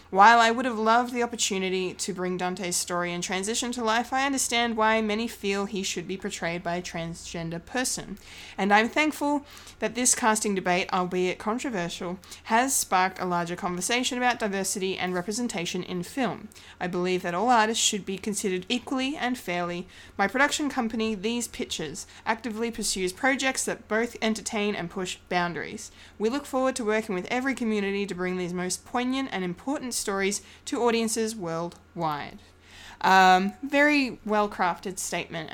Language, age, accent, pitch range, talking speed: English, 20-39, Australian, 175-225 Hz, 160 wpm